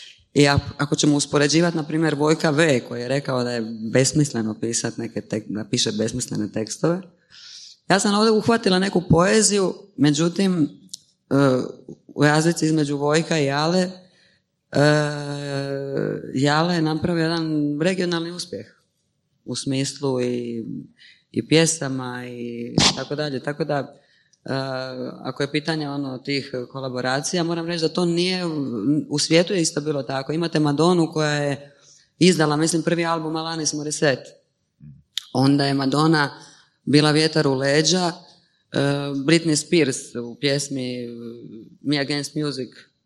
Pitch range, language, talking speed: 130-160 Hz, Croatian, 130 wpm